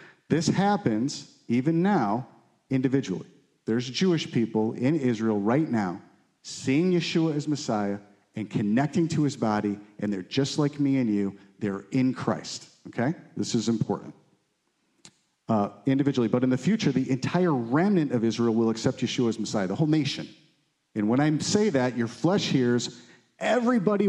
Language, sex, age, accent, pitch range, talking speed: English, male, 40-59, American, 115-155 Hz, 155 wpm